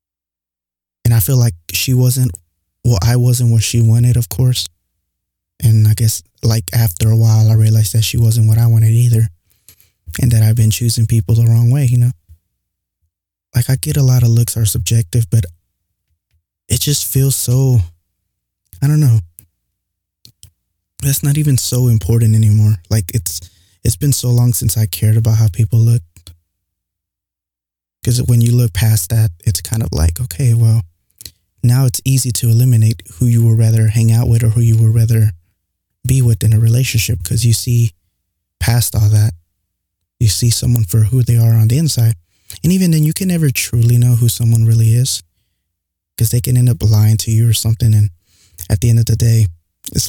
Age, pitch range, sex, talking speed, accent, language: 20-39, 95-120 Hz, male, 185 wpm, American, English